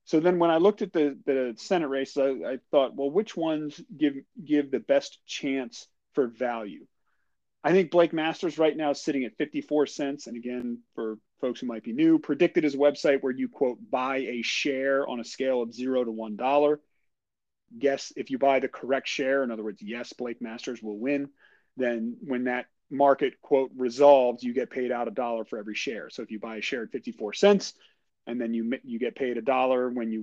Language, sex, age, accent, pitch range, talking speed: English, male, 40-59, American, 120-145 Hz, 220 wpm